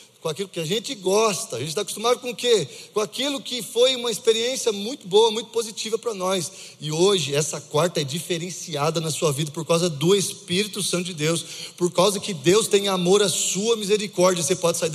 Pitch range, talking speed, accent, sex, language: 175-230 Hz, 215 wpm, Brazilian, male, Portuguese